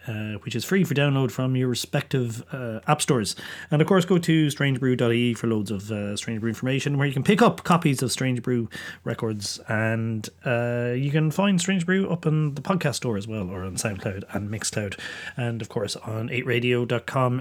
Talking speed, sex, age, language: 205 wpm, male, 30-49, English